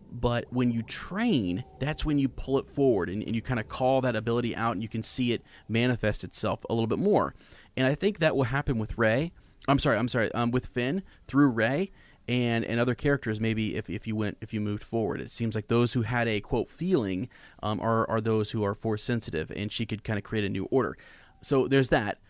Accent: American